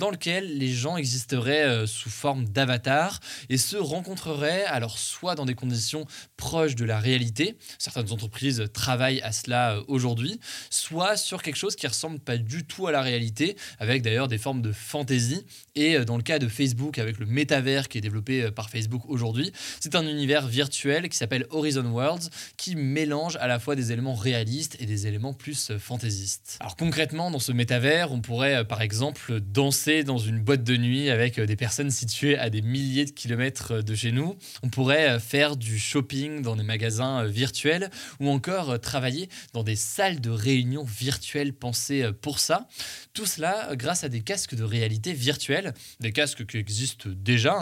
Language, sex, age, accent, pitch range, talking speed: French, male, 20-39, French, 115-145 Hz, 180 wpm